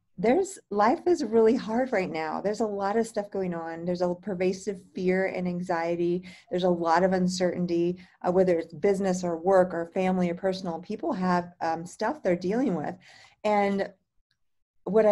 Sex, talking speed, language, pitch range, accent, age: female, 175 wpm, English, 175-200 Hz, American, 40-59